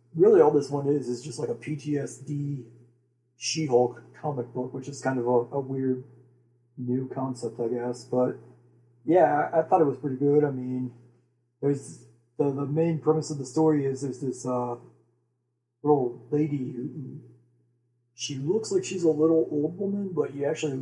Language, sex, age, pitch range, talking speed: English, male, 30-49, 125-155 Hz, 175 wpm